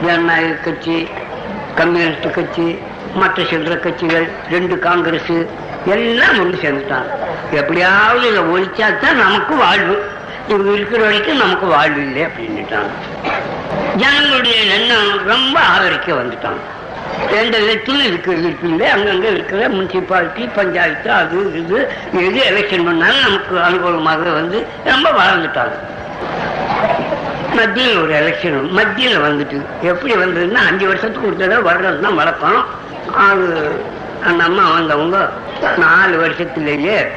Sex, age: female, 60-79